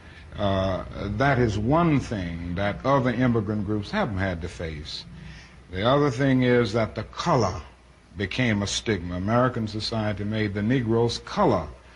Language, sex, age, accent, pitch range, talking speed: English, male, 60-79, American, 100-135 Hz, 145 wpm